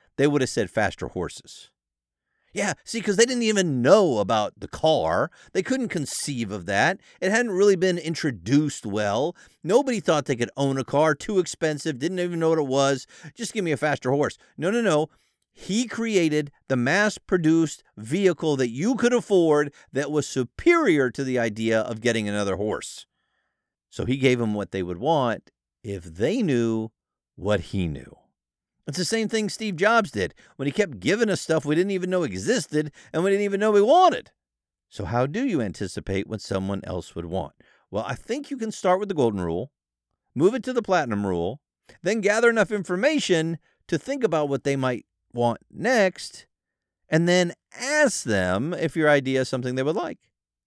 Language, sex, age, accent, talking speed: English, male, 50-69, American, 190 wpm